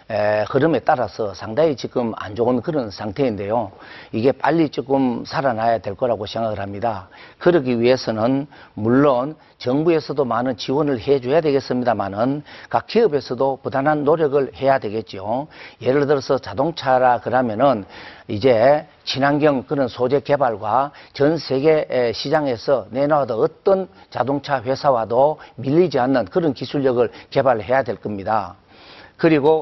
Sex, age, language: male, 50-69, Korean